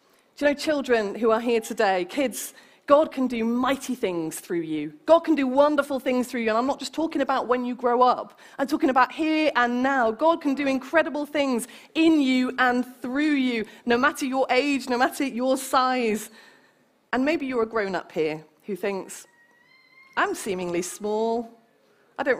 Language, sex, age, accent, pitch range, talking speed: English, female, 30-49, British, 185-260 Hz, 185 wpm